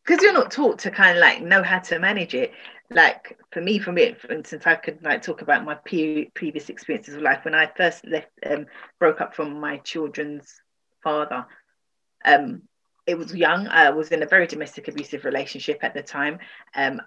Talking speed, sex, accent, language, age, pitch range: 205 wpm, female, British, English, 30-49, 155-240 Hz